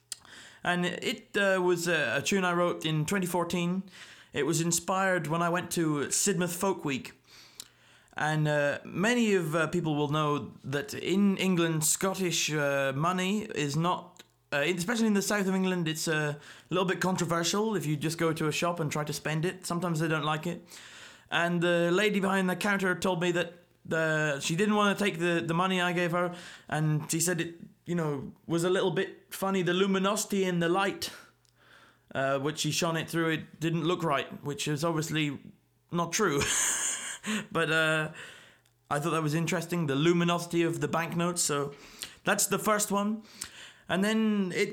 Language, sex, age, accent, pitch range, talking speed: English, male, 20-39, British, 155-190 Hz, 185 wpm